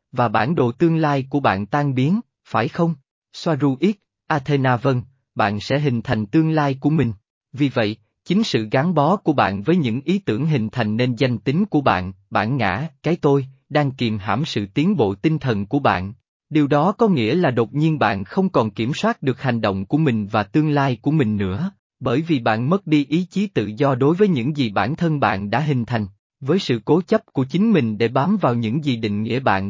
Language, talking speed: Vietnamese, 230 wpm